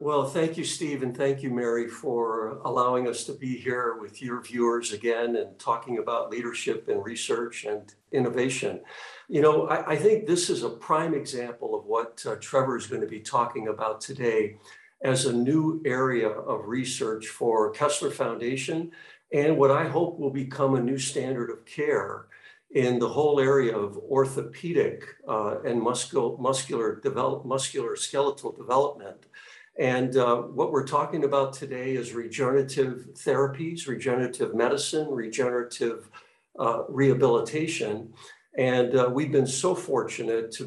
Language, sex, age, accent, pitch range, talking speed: English, male, 60-79, American, 120-165 Hz, 150 wpm